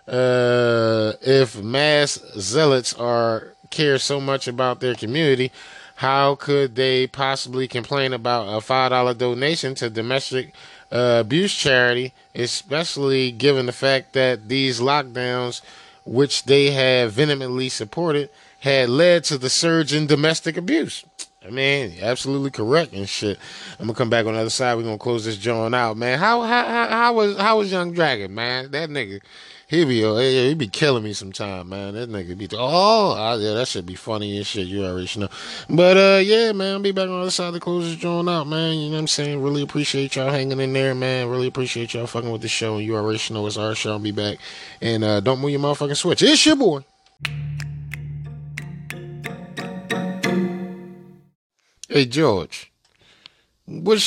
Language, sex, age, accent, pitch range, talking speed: English, male, 20-39, American, 115-150 Hz, 175 wpm